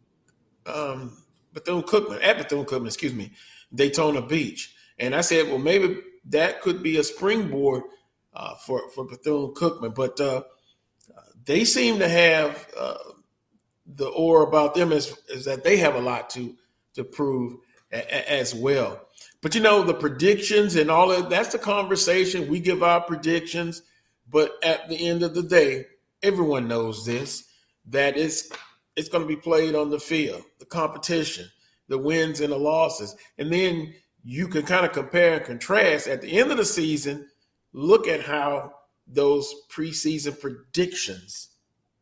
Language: English